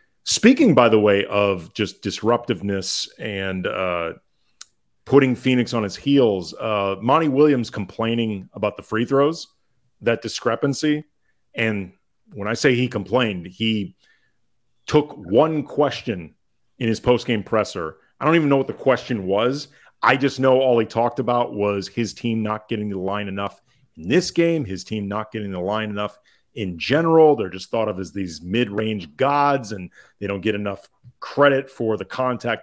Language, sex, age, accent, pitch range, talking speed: English, male, 40-59, American, 100-130 Hz, 165 wpm